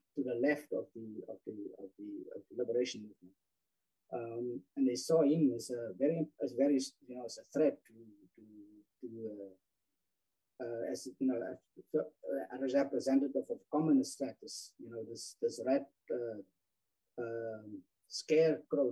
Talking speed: 160 wpm